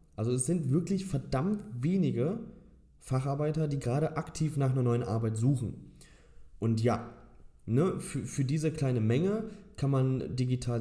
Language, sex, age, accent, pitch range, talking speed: German, male, 20-39, German, 115-155 Hz, 145 wpm